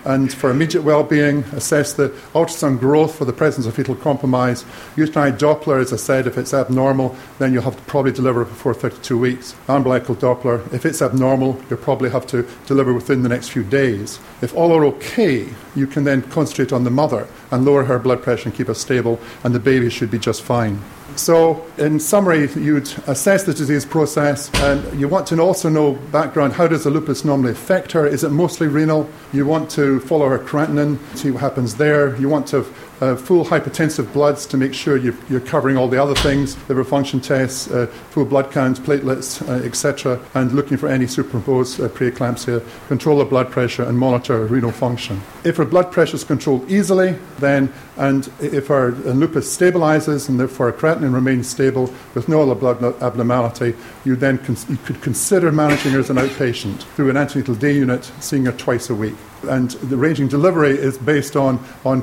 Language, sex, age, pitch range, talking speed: English, male, 50-69, 125-150 Hz, 195 wpm